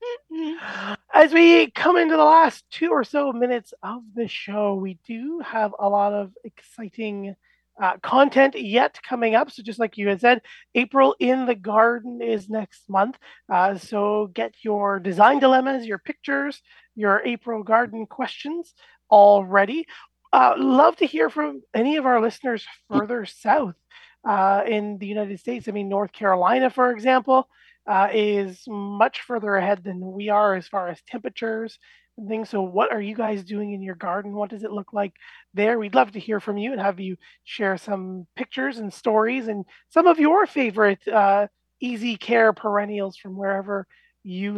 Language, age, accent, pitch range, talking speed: English, 30-49, American, 200-255 Hz, 170 wpm